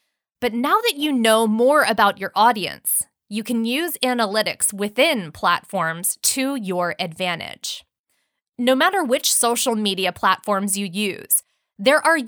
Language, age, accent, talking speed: English, 20-39, American, 135 wpm